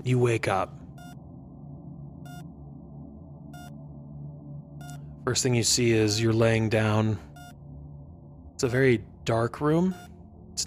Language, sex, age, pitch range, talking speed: English, male, 20-39, 95-120 Hz, 95 wpm